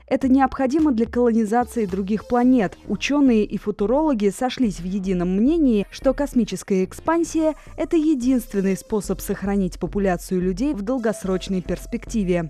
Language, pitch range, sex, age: Russian, 195-255 Hz, female, 20-39